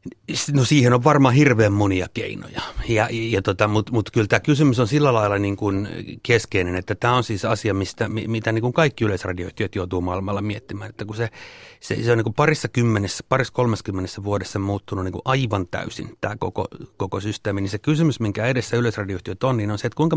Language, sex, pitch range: Finnish, male, 100-125 Hz